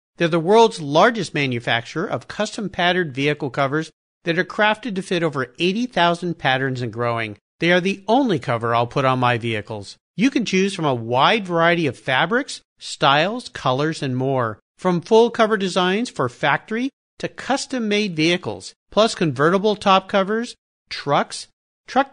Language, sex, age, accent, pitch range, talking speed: English, male, 50-69, American, 140-210 Hz, 155 wpm